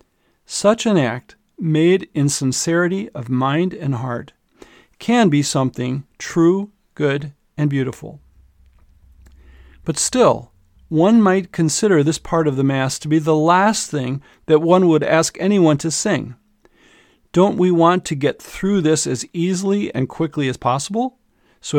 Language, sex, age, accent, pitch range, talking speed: English, male, 40-59, American, 130-175 Hz, 145 wpm